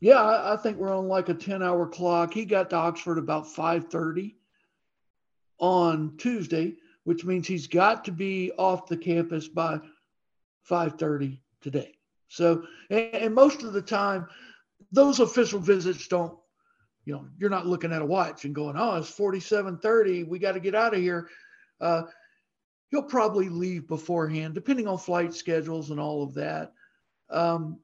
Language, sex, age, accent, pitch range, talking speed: English, male, 60-79, American, 170-205 Hz, 155 wpm